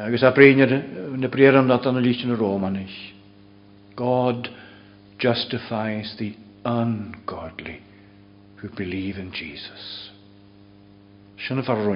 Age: 60-79